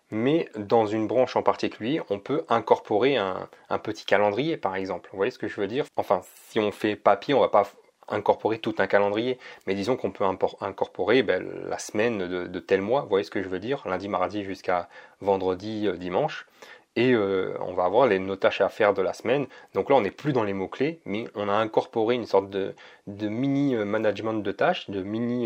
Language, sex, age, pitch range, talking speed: French, male, 30-49, 100-130 Hz, 230 wpm